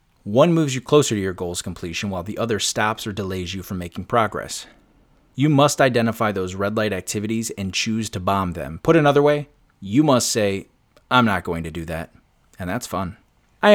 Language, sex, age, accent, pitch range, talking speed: English, male, 30-49, American, 95-130 Hz, 200 wpm